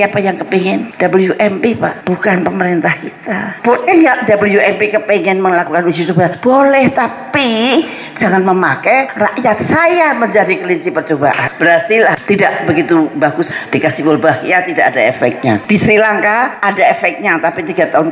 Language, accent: Indonesian, native